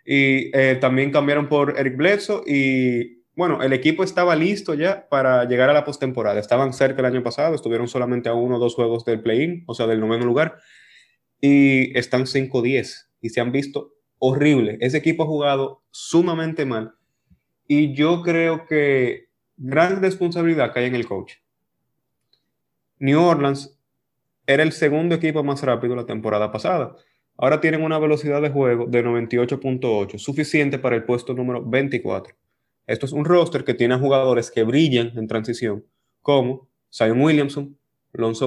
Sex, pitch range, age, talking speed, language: male, 125-155 Hz, 20-39, 160 wpm, Spanish